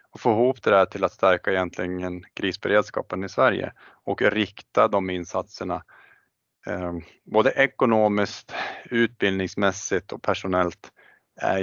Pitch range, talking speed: 90-105 Hz, 110 wpm